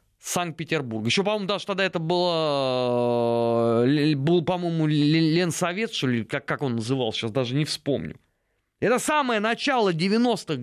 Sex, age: male, 20-39